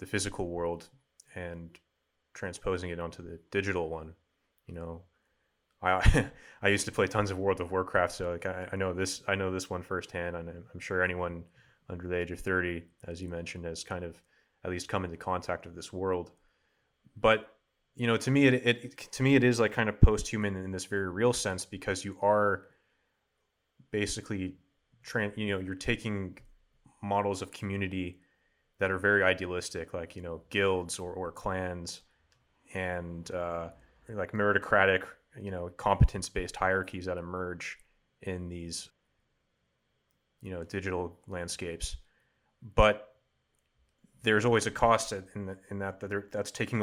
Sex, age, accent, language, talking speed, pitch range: male, 20-39, American, English, 160 wpm, 90-100 Hz